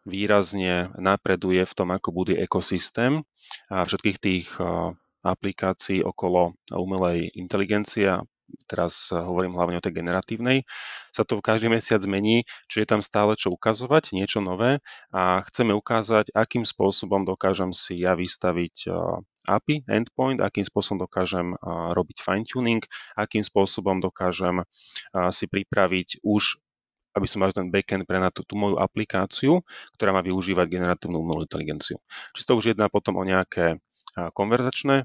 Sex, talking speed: male, 135 wpm